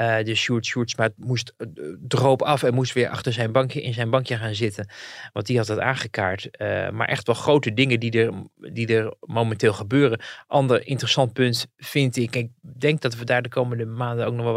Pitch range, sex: 115-135 Hz, male